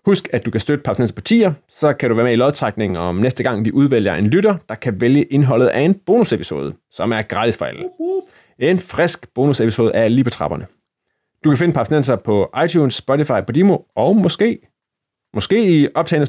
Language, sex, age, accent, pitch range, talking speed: Danish, male, 30-49, native, 115-160 Hz, 195 wpm